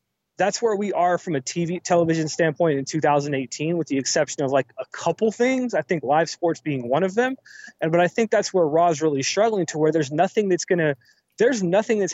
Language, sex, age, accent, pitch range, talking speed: English, male, 20-39, American, 150-185 Hz, 225 wpm